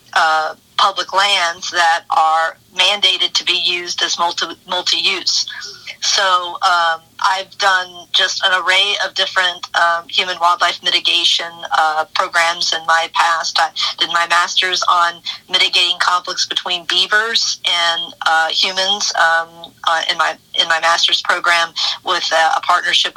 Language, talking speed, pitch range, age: English, 140 wpm, 165-185 Hz, 40-59